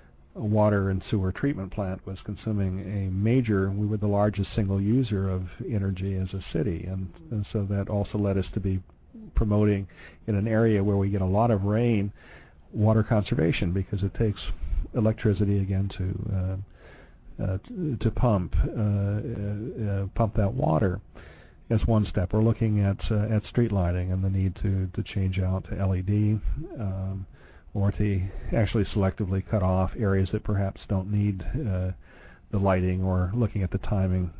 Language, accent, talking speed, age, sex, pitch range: English, American, 170 wpm, 50-69, male, 95-110 Hz